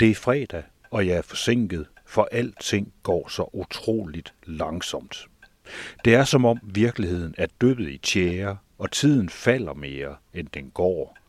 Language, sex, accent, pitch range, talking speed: Danish, male, native, 80-110 Hz, 155 wpm